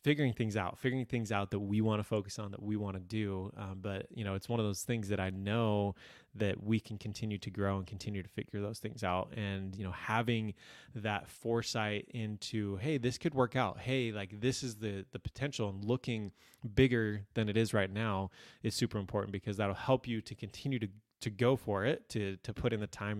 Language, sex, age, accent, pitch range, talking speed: English, male, 20-39, American, 100-115 Hz, 230 wpm